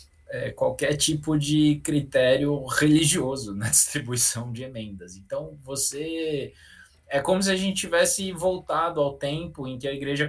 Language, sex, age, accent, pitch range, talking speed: Portuguese, male, 20-39, Brazilian, 115-145 Hz, 145 wpm